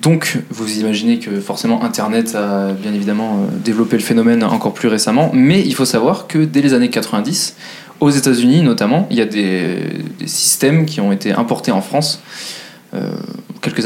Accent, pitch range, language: French, 105-150 Hz, French